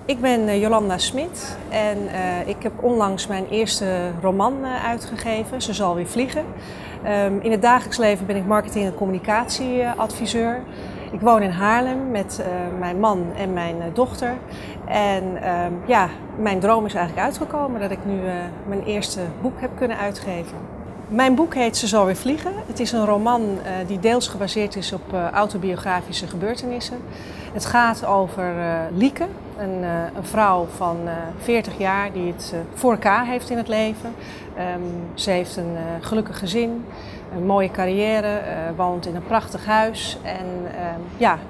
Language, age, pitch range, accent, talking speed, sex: Dutch, 30-49, 180-225 Hz, Dutch, 145 wpm, female